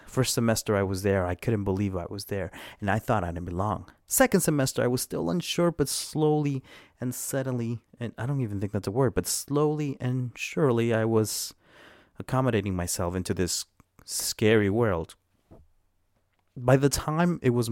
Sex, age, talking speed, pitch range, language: male, 30-49, 175 wpm, 95-130 Hz, English